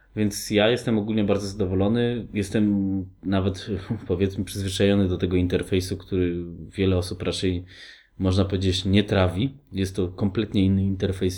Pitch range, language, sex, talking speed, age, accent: 90-105 Hz, Polish, male, 135 wpm, 20-39, native